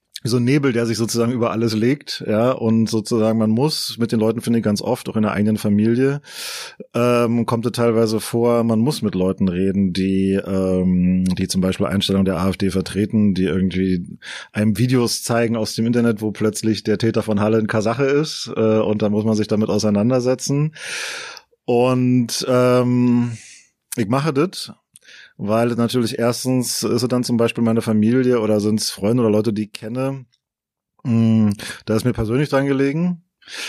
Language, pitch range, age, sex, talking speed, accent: German, 105-120 Hz, 30-49, male, 175 wpm, German